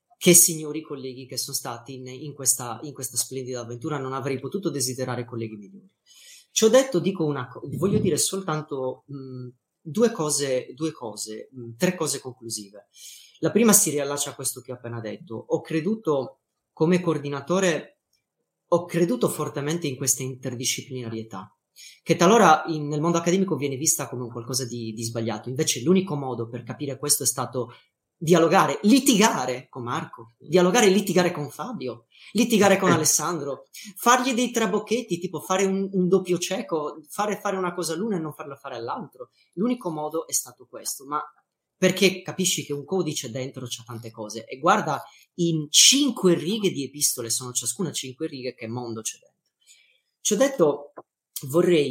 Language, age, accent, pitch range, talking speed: Italian, 30-49, native, 130-180 Hz, 165 wpm